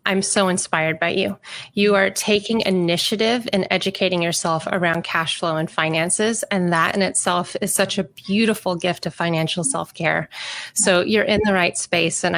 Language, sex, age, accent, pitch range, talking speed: English, female, 30-49, American, 170-195 Hz, 180 wpm